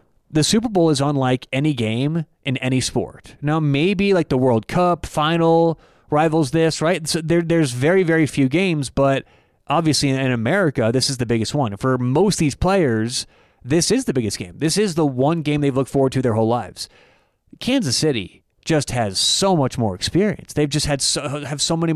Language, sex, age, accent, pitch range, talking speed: English, male, 30-49, American, 125-165 Hz, 200 wpm